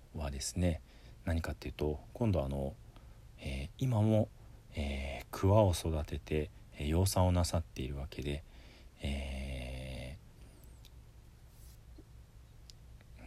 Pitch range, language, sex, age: 75-105 Hz, Japanese, male, 40-59